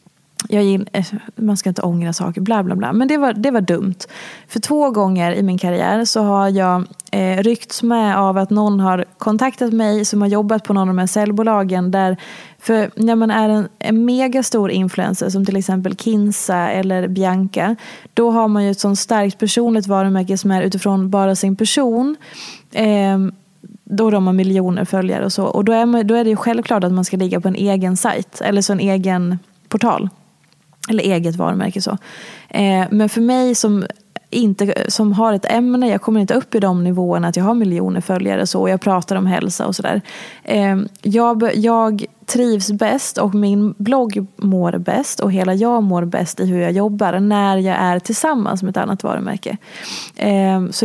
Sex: female